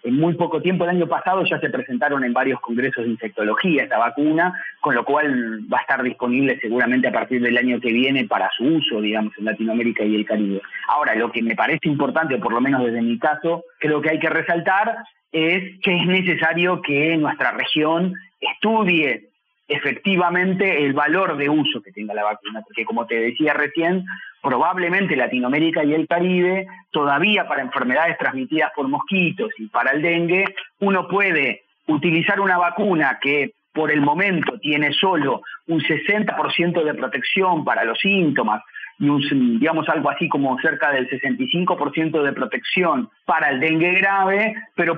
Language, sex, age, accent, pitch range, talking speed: Spanish, male, 30-49, Argentinian, 135-180 Hz, 170 wpm